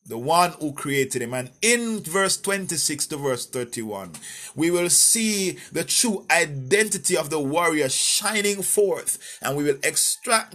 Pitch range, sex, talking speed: 145-205 Hz, male, 155 wpm